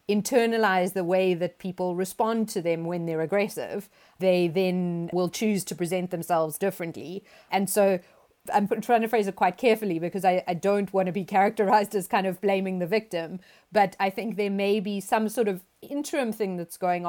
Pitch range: 175-205 Hz